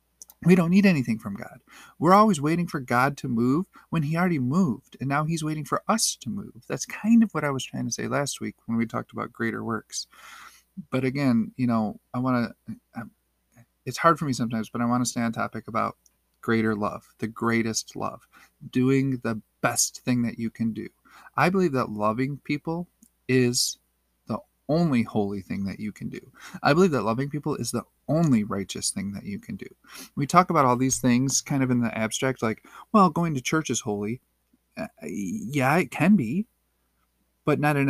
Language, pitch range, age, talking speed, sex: English, 110-145 Hz, 40-59, 205 wpm, male